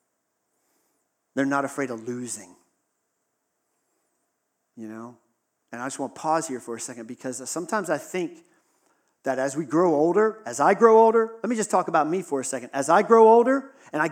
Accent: American